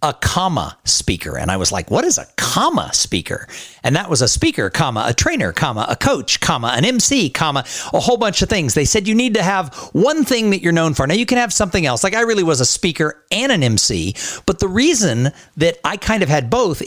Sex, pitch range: male, 120-175 Hz